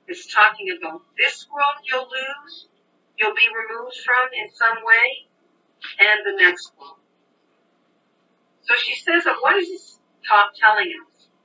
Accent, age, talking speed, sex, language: American, 50-69, 140 wpm, female, English